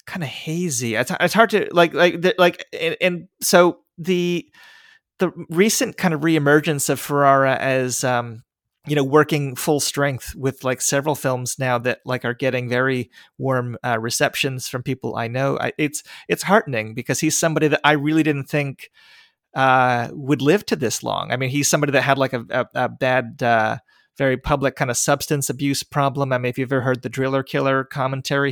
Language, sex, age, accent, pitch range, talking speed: English, male, 30-49, American, 125-150 Hz, 195 wpm